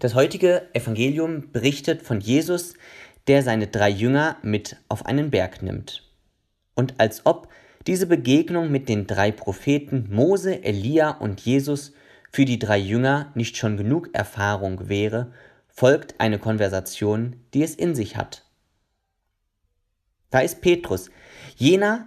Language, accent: German, German